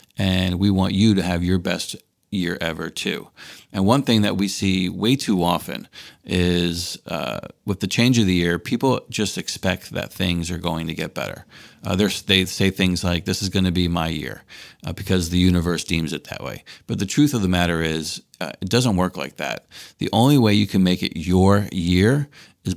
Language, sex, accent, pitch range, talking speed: English, male, American, 85-100 Hz, 210 wpm